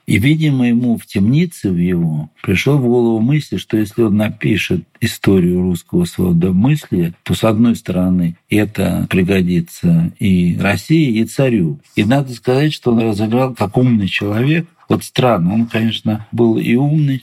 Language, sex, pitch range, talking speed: Russian, male, 95-130 Hz, 155 wpm